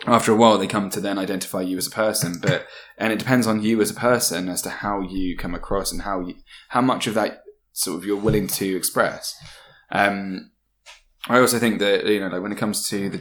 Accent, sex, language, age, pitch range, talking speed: British, male, English, 10-29, 95-120 Hz, 240 wpm